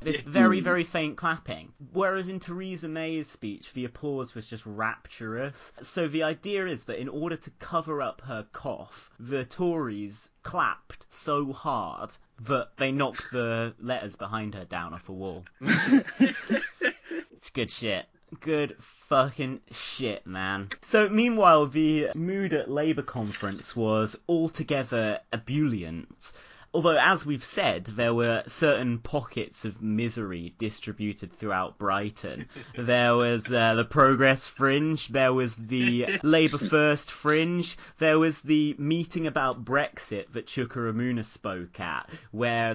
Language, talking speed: English, 135 wpm